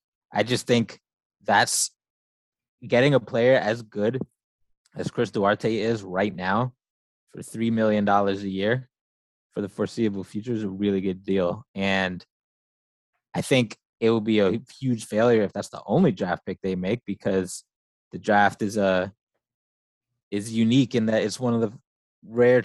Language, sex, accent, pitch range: English, male, American, 100-120 Hz